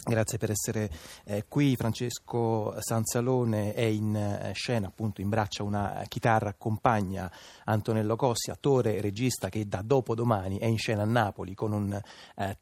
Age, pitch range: 30-49, 105-115 Hz